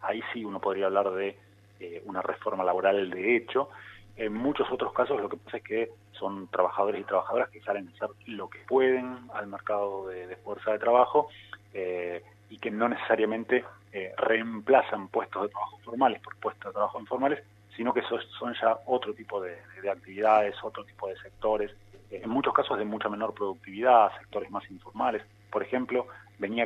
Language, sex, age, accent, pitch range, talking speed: Spanish, male, 30-49, Argentinian, 100-110 Hz, 185 wpm